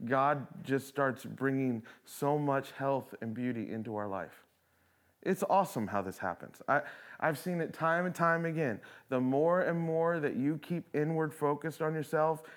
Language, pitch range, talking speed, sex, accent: English, 135-175 Hz, 165 wpm, male, American